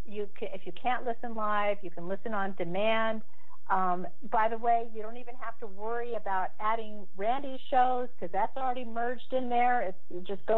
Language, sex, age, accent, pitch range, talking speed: English, female, 50-69, American, 180-225 Hz, 205 wpm